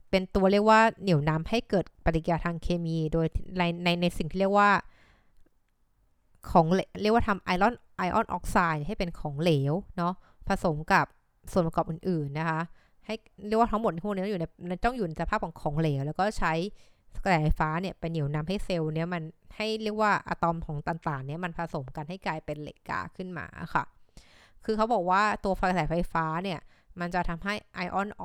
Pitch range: 160-195 Hz